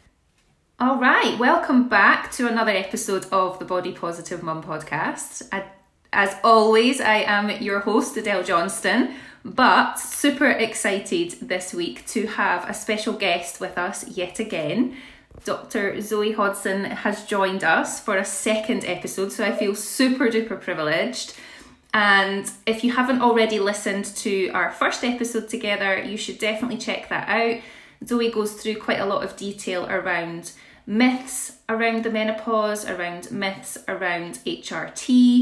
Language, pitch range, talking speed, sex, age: English, 195-235 Hz, 145 wpm, female, 20-39